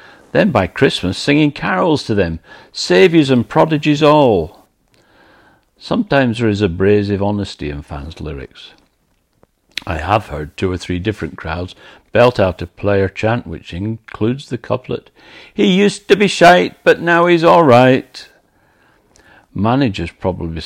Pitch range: 90-115 Hz